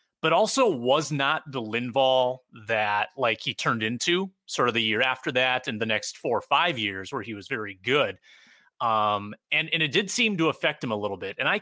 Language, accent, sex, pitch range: English, American, male, 115-165 Hz